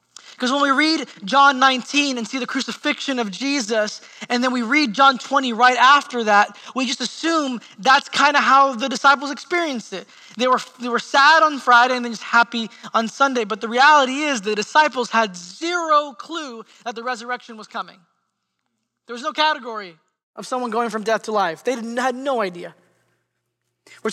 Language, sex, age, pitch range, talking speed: English, male, 20-39, 225-280 Hz, 190 wpm